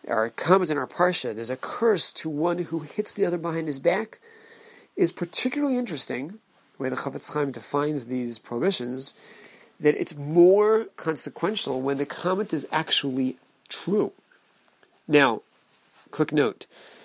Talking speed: 145 wpm